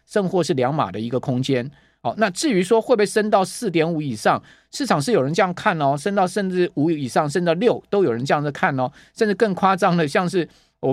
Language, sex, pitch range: Chinese, male, 135-185 Hz